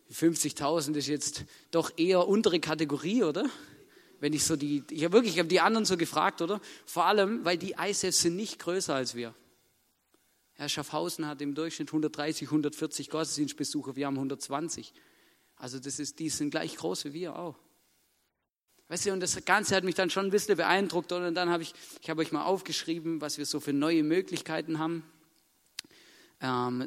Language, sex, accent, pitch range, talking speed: German, male, German, 155-190 Hz, 185 wpm